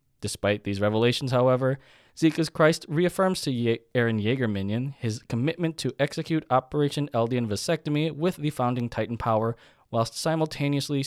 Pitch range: 105-145 Hz